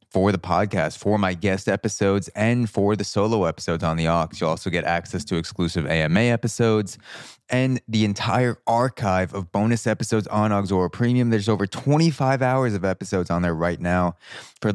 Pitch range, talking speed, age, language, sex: 90-110 Hz, 180 wpm, 20-39, English, male